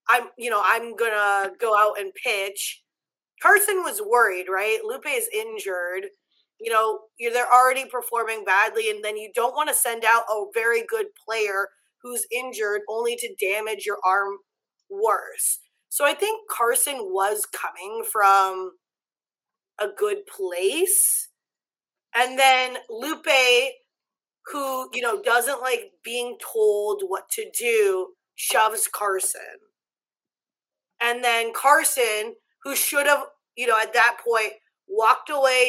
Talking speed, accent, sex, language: 135 wpm, American, female, English